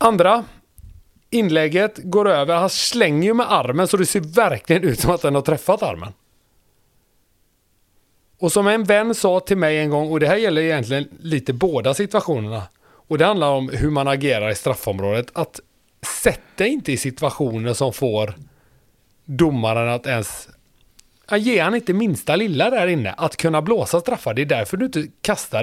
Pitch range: 115-165 Hz